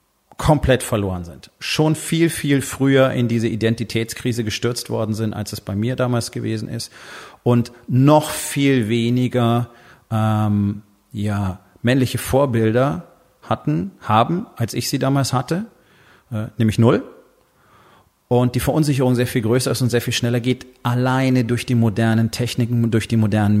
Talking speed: 150 wpm